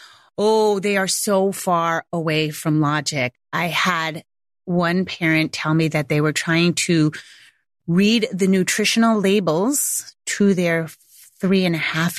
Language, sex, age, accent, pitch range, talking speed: English, female, 30-49, American, 160-225 Hz, 145 wpm